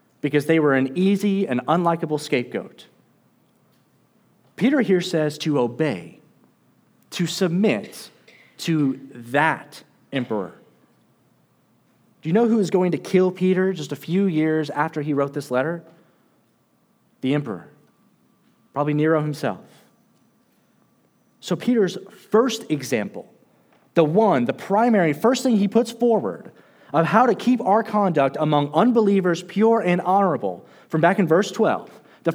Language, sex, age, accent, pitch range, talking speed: English, male, 30-49, American, 150-210 Hz, 130 wpm